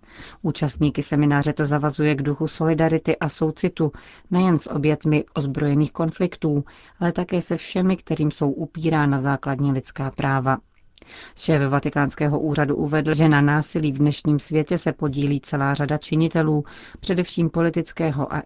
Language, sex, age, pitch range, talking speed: Czech, female, 40-59, 145-165 Hz, 135 wpm